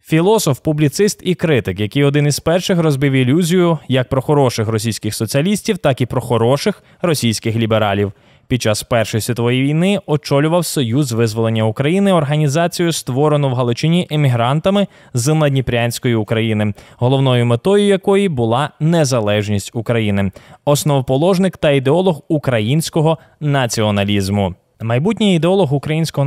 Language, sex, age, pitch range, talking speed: Ukrainian, male, 20-39, 125-165 Hz, 120 wpm